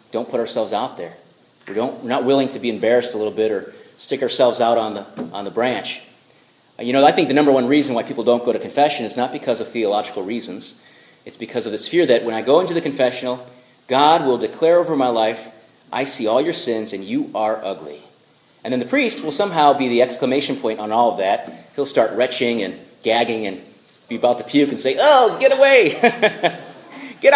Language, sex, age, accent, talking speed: English, male, 40-59, American, 225 wpm